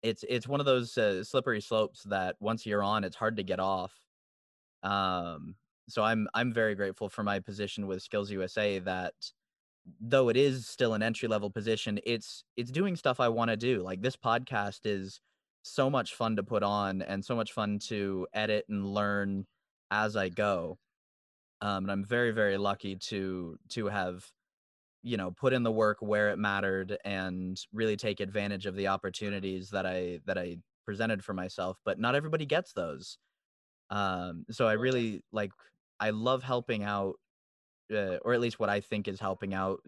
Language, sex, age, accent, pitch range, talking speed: English, male, 20-39, American, 95-110 Hz, 185 wpm